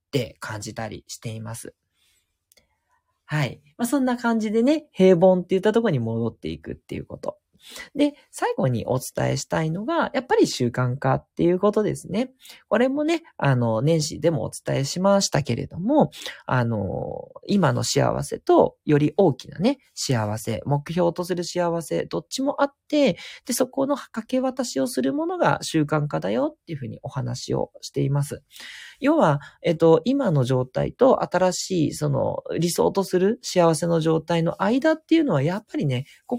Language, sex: Japanese, male